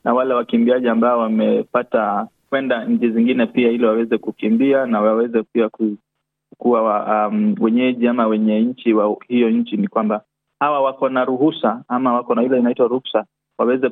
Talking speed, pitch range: 155 wpm, 120-150 Hz